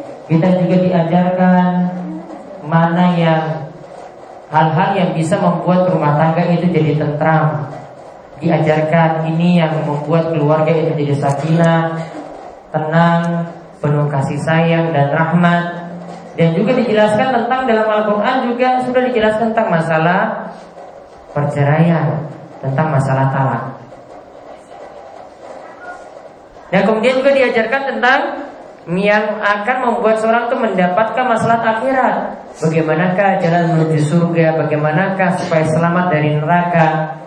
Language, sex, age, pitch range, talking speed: Malay, male, 20-39, 160-190 Hz, 105 wpm